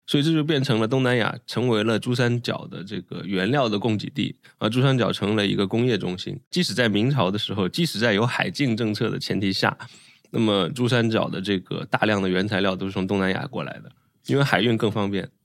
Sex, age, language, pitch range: male, 20-39, Chinese, 100-125 Hz